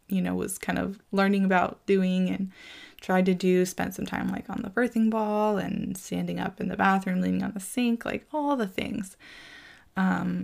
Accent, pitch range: American, 180-220 Hz